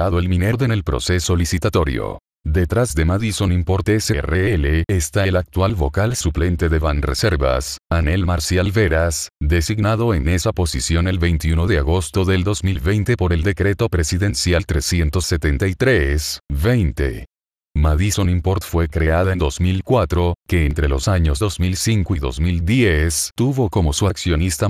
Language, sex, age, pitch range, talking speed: Spanish, male, 40-59, 80-100 Hz, 130 wpm